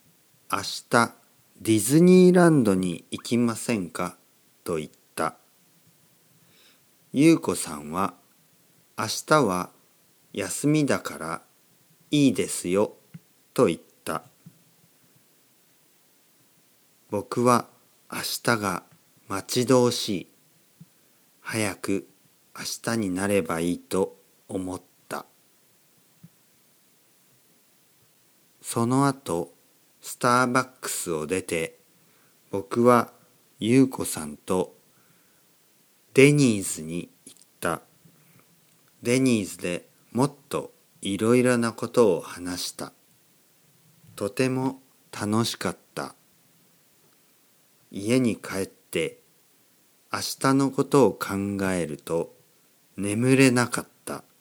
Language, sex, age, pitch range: Japanese, male, 50-69, 90-130 Hz